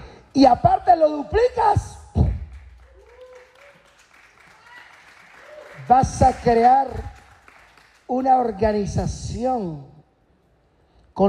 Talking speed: 55 wpm